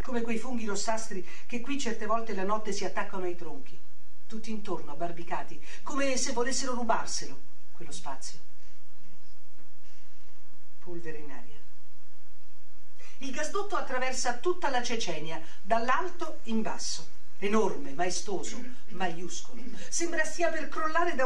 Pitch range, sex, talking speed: 180-255 Hz, female, 120 wpm